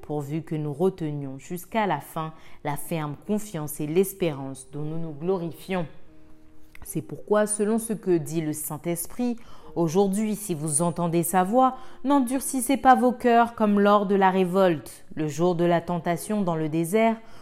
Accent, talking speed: French, 160 wpm